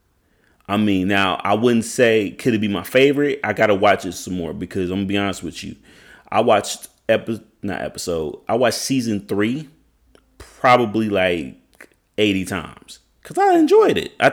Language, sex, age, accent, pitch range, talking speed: English, male, 30-49, American, 95-130 Hz, 175 wpm